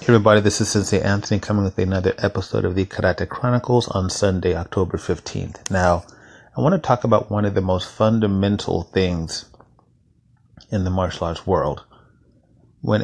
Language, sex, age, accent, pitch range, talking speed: English, male, 30-49, American, 90-110 Hz, 165 wpm